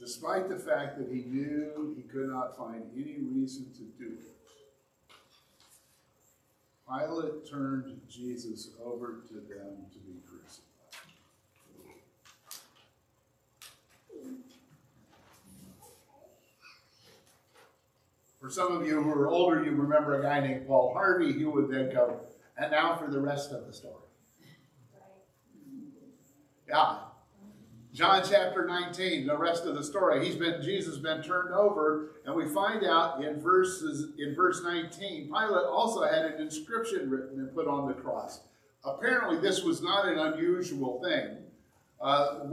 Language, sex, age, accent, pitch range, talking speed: English, male, 50-69, American, 135-195 Hz, 135 wpm